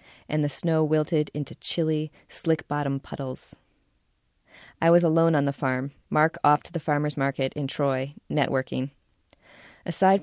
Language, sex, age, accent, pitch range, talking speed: English, female, 20-39, American, 135-160 Hz, 140 wpm